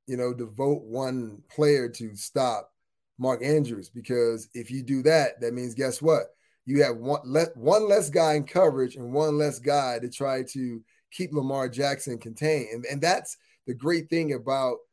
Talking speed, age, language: 175 wpm, 20-39, English